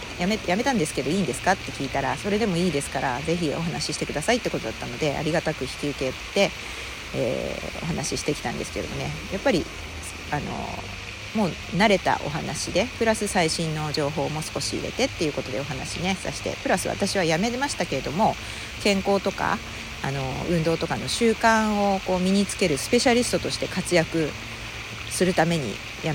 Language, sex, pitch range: Japanese, female, 135-200 Hz